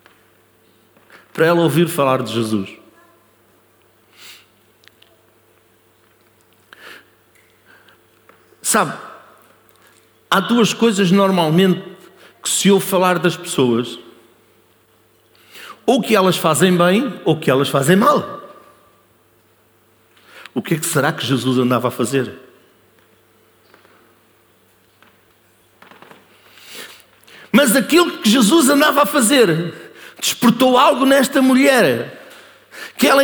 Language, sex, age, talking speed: Portuguese, male, 60-79, 90 wpm